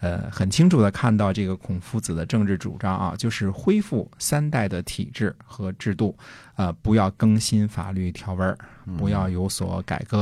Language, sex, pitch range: Chinese, male, 95-125 Hz